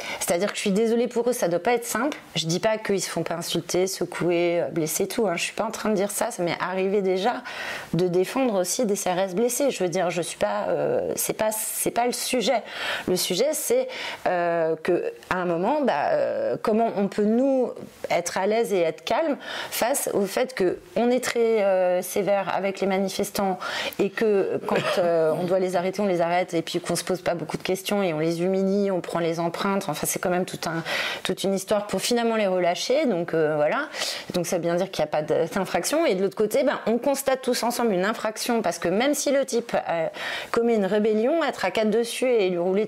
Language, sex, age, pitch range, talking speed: French, female, 30-49, 180-235 Hz, 230 wpm